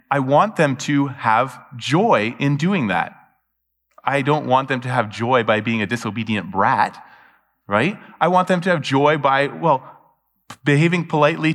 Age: 20-39